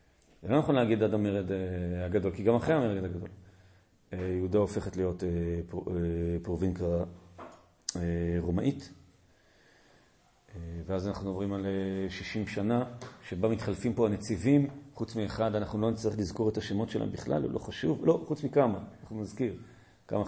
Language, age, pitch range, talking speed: Hebrew, 40-59, 100-135 Hz, 135 wpm